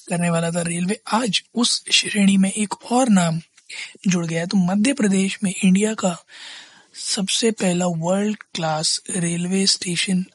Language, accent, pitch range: Hindi, native, 175-200 Hz